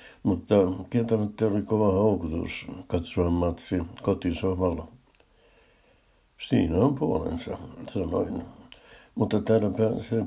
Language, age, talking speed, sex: Finnish, 60-79, 80 wpm, male